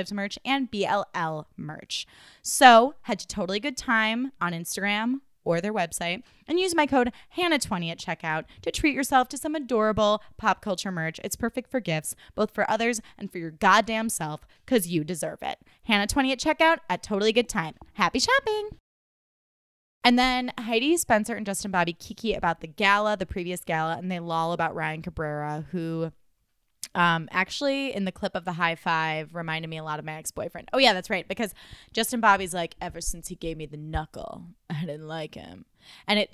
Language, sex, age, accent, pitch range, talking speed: English, female, 20-39, American, 170-230 Hz, 190 wpm